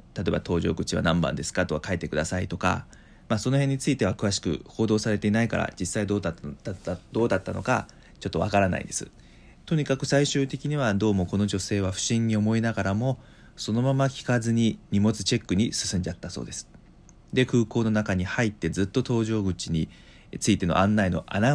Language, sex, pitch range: Japanese, male, 95-120 Hz